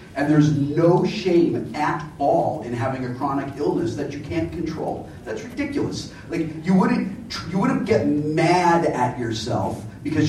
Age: 40-59